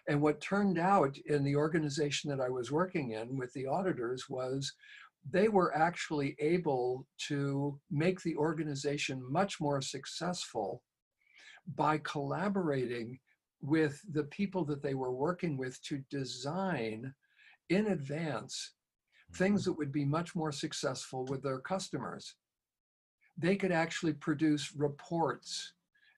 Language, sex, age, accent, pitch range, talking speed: English, male, 50-69, American, 135-160 Hz, 130 wpm